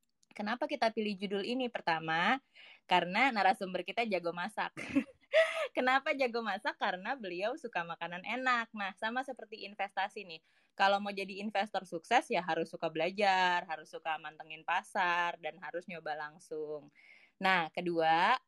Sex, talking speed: female, 140 wpm